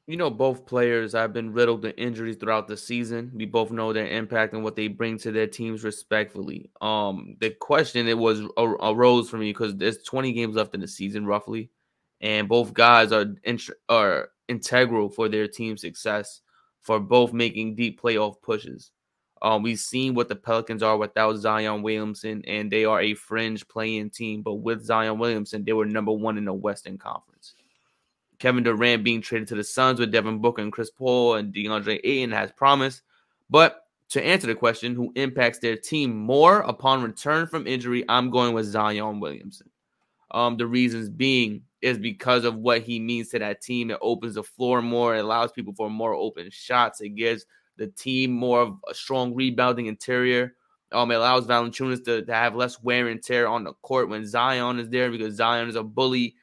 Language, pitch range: English, 110-120 Hz